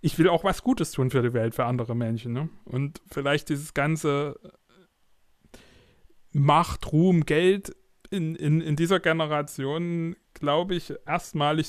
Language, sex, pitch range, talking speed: German, male, 120-155 Hz, 145 wpm